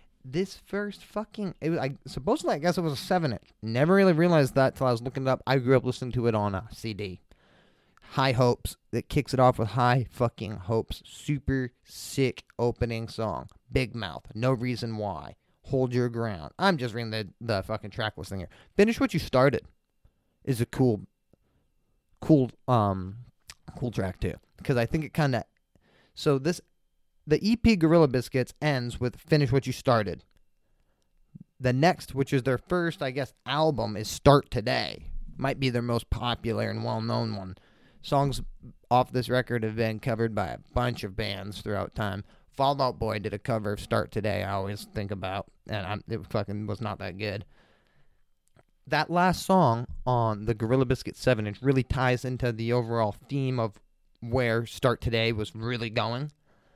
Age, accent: 30-49, American